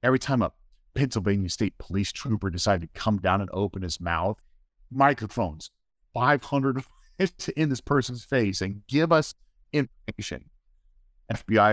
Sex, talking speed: male, 135 wpm